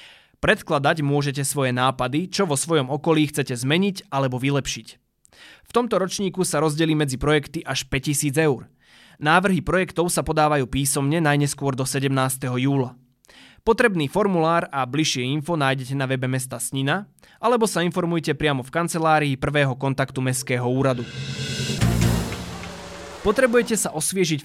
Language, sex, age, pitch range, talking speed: Slovak, male, 20-39, 135-165 Hz, 135 wpm